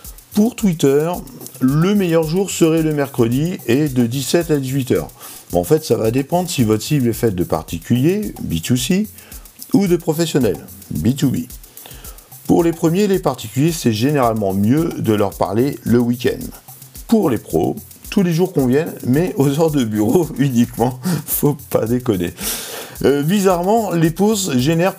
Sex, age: male, 50-69